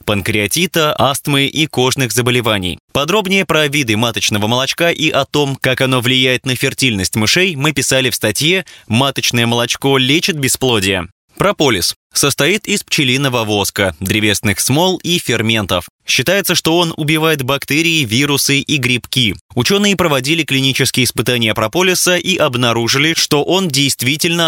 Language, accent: Russian, native